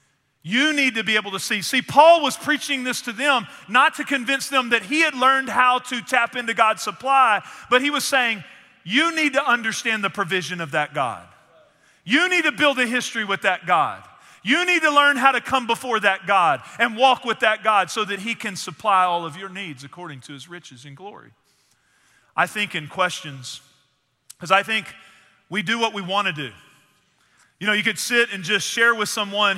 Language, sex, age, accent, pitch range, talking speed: English, male, 40-59, American, 185-235 Hz, 210 wpm